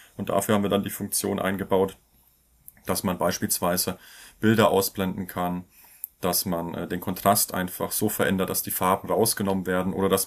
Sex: male